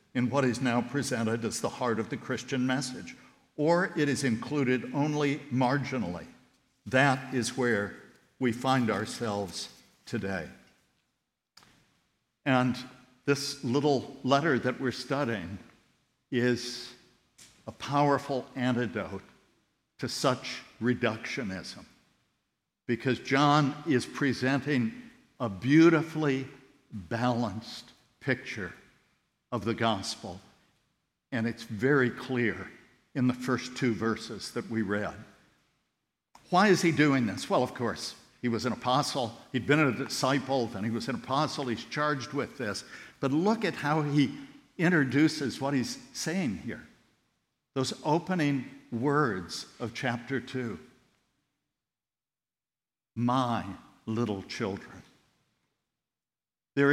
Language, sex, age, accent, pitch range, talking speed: English, male, 60-79, American, 120-145 Hz, 115 wpm